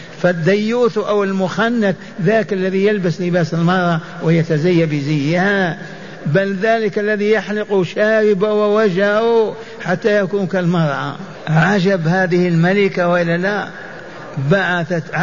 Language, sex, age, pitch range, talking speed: Arabic, male, 60-79, 170-210 Hz, 95 wpm